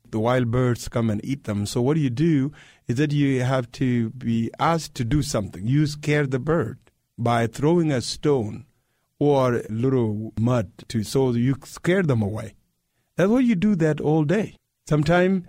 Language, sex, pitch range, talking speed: English, male, 115-150 Hz, 180 wpm